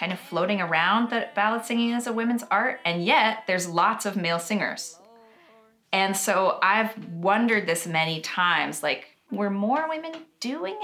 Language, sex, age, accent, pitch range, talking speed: English, female, 30-49, American, 160-220 Hz, 165 wpm